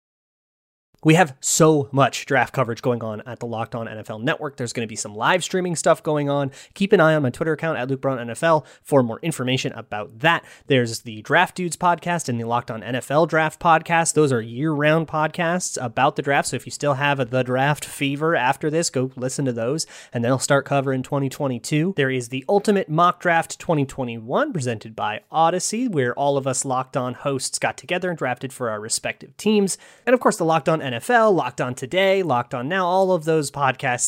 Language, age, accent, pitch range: English, 30-49, American, 125-175 Hz